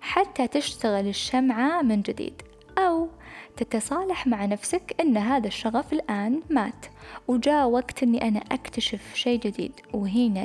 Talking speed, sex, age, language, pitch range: 125 wpm, female, 10-29, Arabic, 215-275 Hz